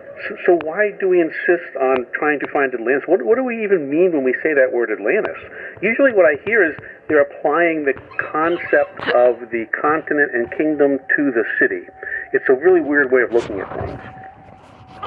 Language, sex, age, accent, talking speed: English, male, 50-69, American, 195 wpm